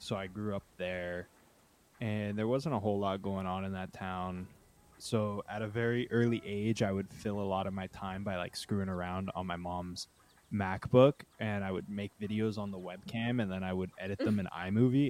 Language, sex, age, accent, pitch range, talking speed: English, male, 20-39, American, 95-115 Hz, 215 wpm